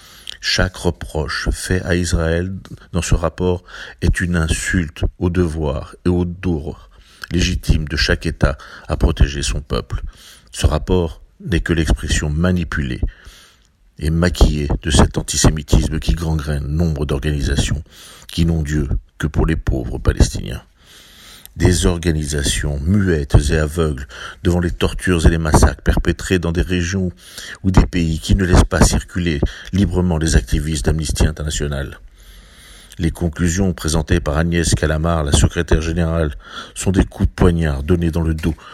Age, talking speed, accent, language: 50-69, 145 wpm, French, French